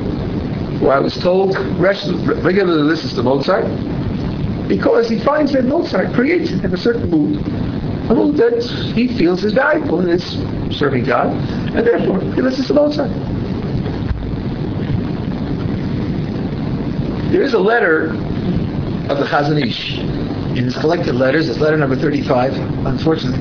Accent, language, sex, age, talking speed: American, English, male, 60-79, 135 wpm